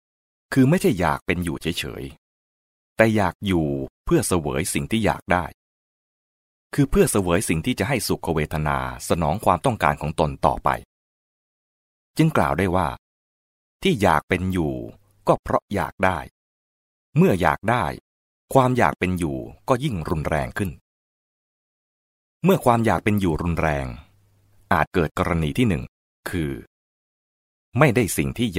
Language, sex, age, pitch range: English, male, 30-49, 70-105 Hz